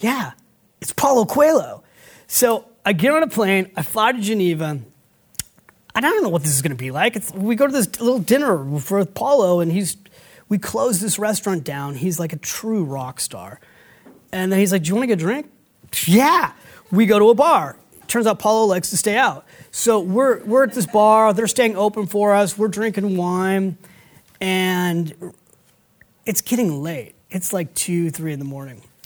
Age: 30-49